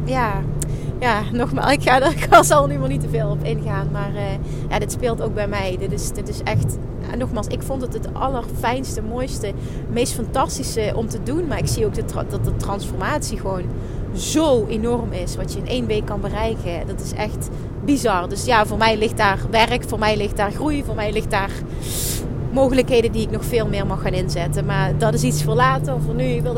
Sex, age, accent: female, 30-49, Dutch